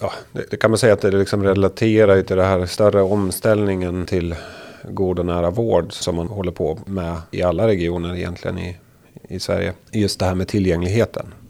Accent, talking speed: native, 195 wpm